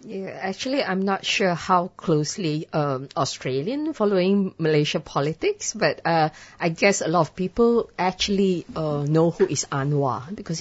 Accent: Malaysian